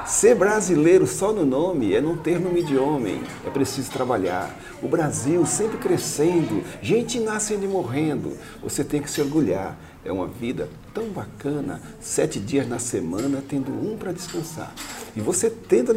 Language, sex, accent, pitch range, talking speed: Portuguese, male, Brazilian, 135-185 Hz, 165 wpm